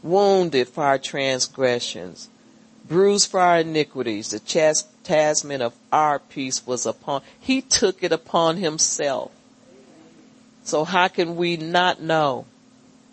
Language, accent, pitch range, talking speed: English, American, 155-240 Hz, 120 wpm